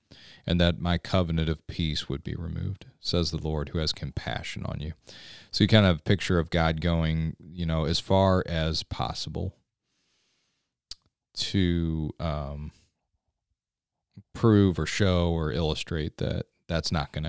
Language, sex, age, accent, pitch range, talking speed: English, male, 30-49, American, 80-95 Hz, 155 wpm